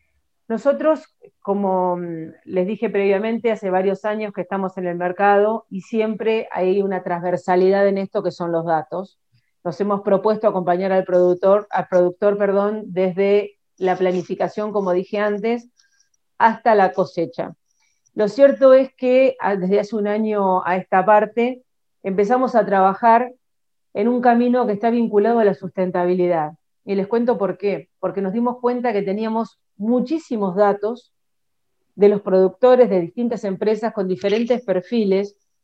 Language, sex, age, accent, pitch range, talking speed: Spanish, female, 40-59, Argentinian, 185-235 Hz, 145 wpm